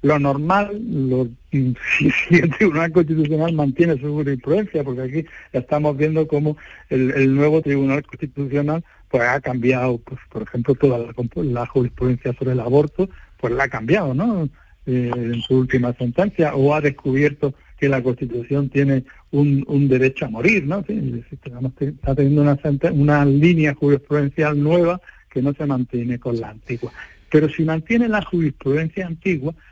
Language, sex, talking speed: Spanish, male, 160 wpm